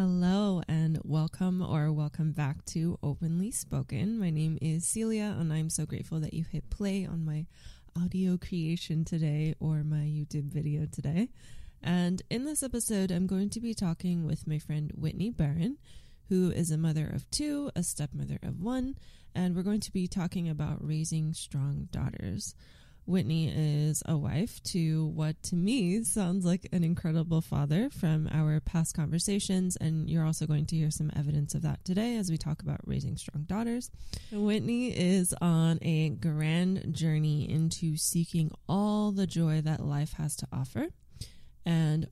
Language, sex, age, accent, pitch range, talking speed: English, female, 20-39, American, 155-185 Hz, 165 wpm